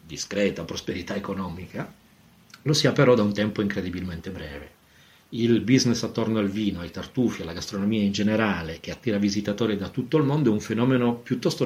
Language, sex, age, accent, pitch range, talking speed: Italian, male, 40-59, native, 90-115 Hz, 170 wpm